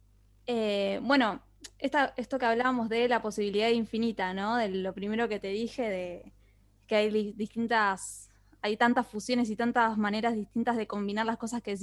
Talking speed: 170 wpm